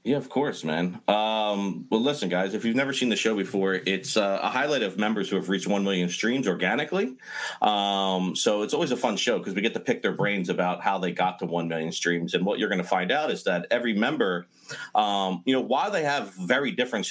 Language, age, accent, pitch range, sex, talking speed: English, 40-59, American, 90-120 Hz, male, 240 wpm